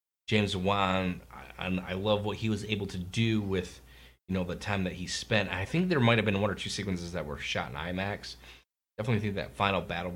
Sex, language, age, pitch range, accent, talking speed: male, English, 30-49, 85-105 Hz, American, 230 wpm